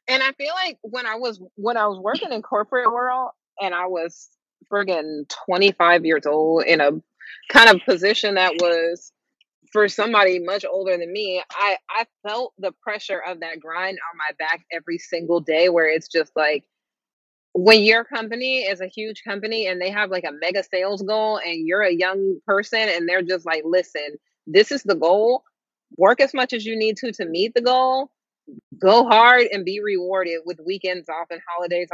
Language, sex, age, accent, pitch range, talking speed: English, female, 30-49, American, 175-225 Hz, 190 wpm